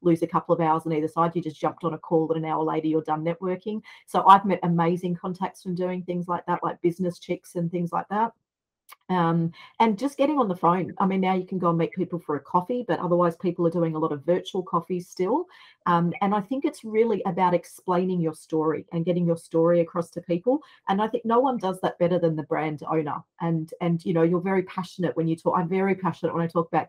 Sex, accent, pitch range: female, Australian, 165-185 Hz